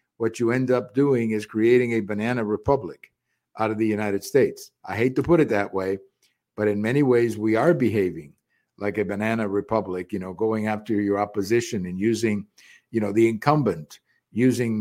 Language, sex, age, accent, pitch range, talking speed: English, male, 50-69, American, 105-135 Hz, 185 wpm